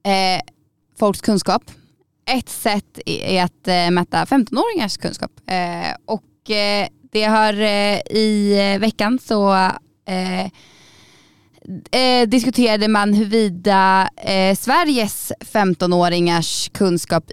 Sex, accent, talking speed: female, native, 100 wpm